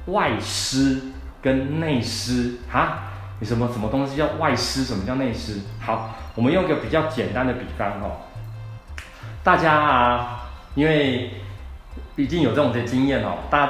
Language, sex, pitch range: Chinese, male, 105-140 Hz